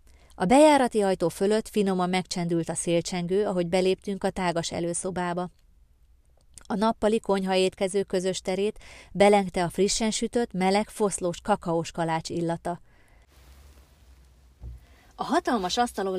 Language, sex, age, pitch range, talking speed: Hungarian, female, 30-49, 175-210 Hz, 115 wpm